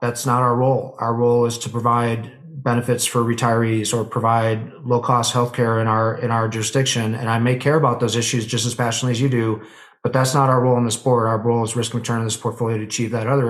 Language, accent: English, American